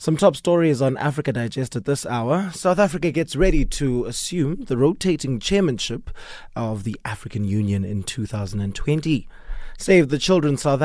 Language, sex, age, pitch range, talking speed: English, male, 20-39, 115-150 Hz, 155 wpm